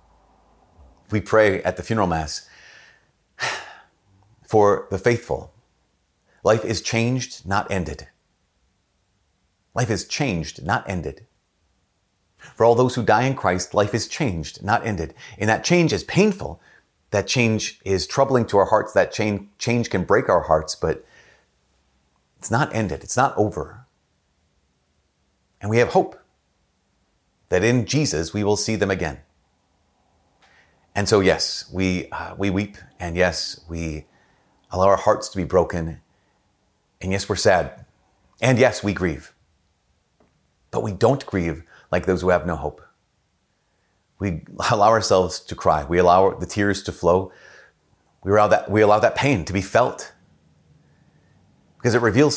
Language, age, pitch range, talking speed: English, 30-49, 85-110 Hz, 140 wpm